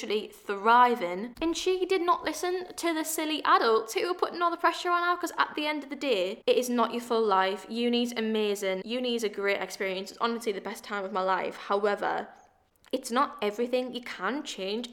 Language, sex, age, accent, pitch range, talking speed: English, female, 10-29, British, 205-320 Hz, 215 wpm